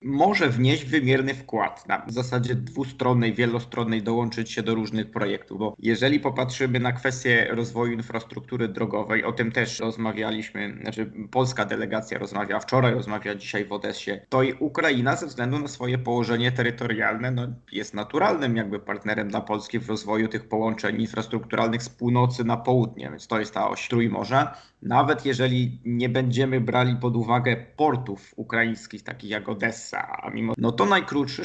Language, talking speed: Polish, 155 wpm